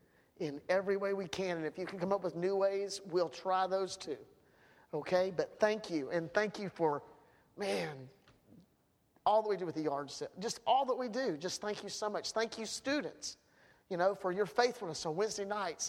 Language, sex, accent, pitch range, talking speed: English, male, American, 170-215 Hz, 210 wpm